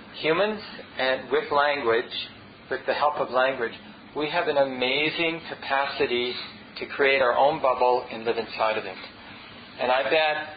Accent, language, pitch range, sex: American, English, 130-165 Hz, male